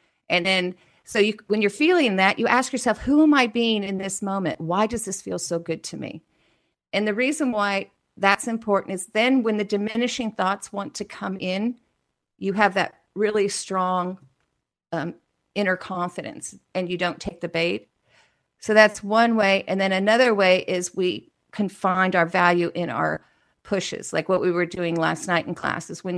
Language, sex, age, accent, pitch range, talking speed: English, female, 50-69, American, 180-215 Hz, 190 wpm